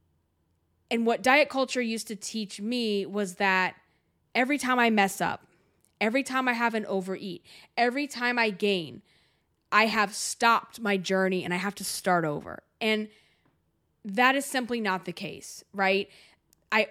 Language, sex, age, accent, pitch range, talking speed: English, female, 20-39, American, 200-250 Hz, 160 wpm